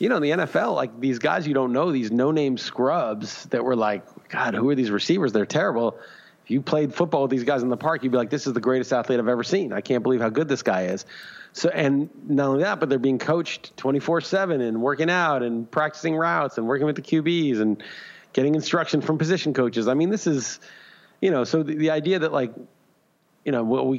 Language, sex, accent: English, male, American